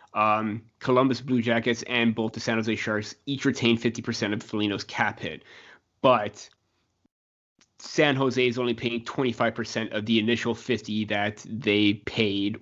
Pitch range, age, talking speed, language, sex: 105-120 Hz, 30-49, 145 wpm, English, male